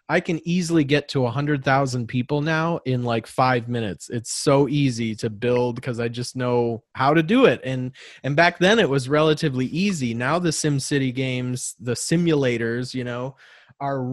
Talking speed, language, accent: 180 wpm, English, American